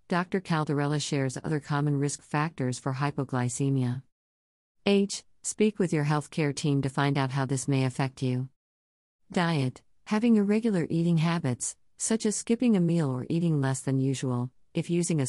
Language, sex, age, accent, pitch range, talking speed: English, female, 50-69, American, 130-165 Hz, 160 wpm